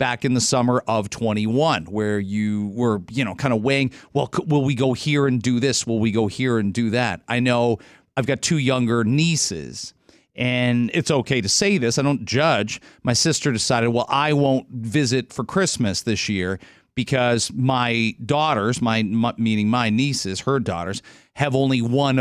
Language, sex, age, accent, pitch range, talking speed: English, male, 40-59, American, 115-150 Hz, 185 wpm